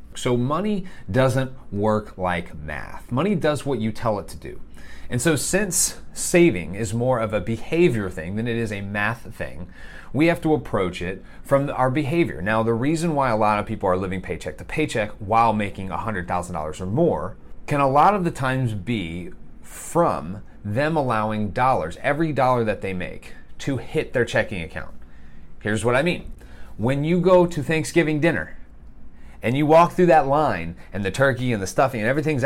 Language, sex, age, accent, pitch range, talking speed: English, male, 30-49, American, 100-150 Hz, 185 wpm